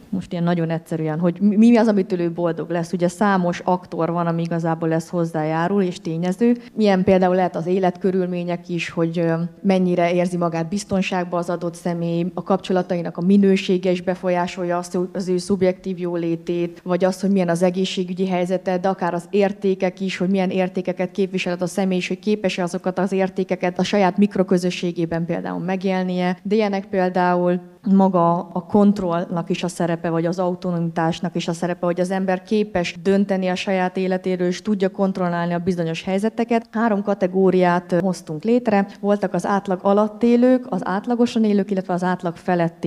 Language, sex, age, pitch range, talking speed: Hungarian, female, 20-39, 175-195 Hz, 165 wpm